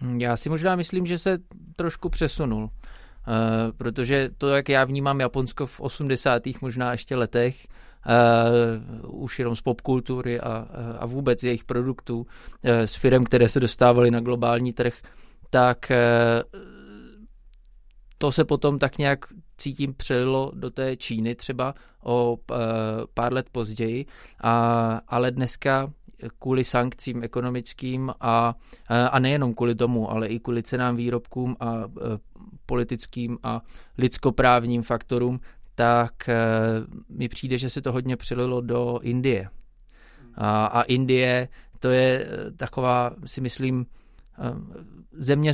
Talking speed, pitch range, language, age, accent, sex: 125 wpm, 120-135 Hz, Czech, 20-39, native, male